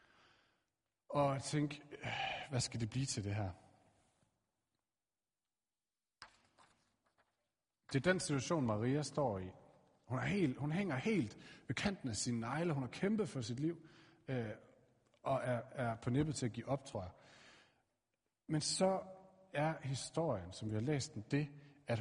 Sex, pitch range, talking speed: male, 110-145 Hz, 145 wpm